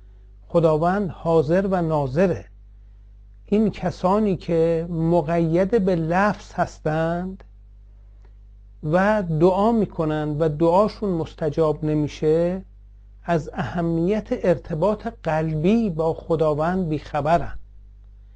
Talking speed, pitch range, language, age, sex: 80 wpm, 130-185 Hz, Persian, 60-79, male